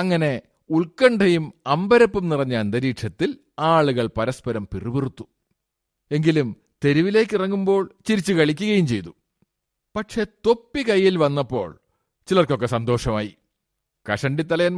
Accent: native